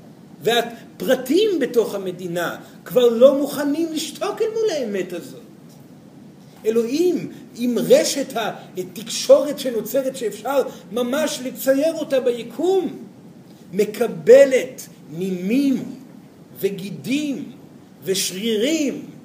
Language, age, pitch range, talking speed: Hebrew, 50-69, 215-275 Hz, 80 wpm